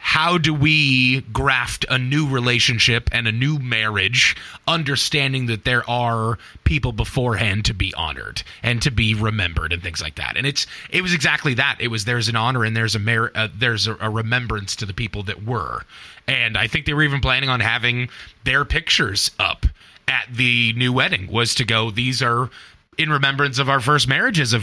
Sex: male